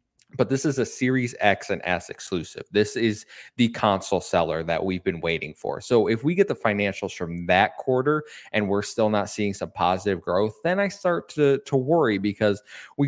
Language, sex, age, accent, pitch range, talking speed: English, male, 20-39, American, 95-120 Hz, 200 wpm